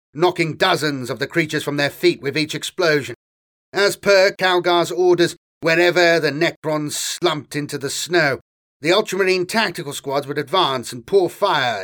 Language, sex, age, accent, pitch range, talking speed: English, male, 40-59, British, 145-185 Hz, 155 wpm